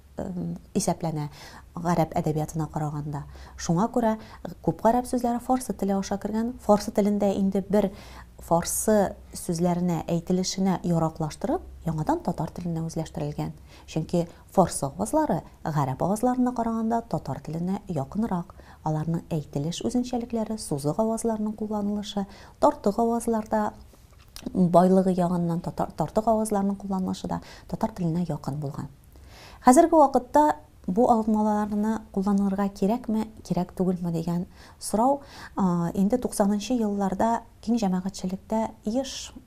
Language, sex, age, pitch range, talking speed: English, female, 30-49, 170-220 Hz, 95 wpm